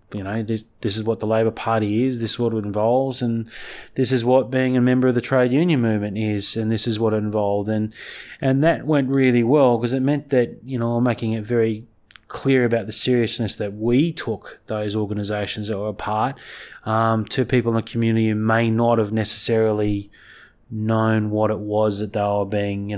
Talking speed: 210 wpm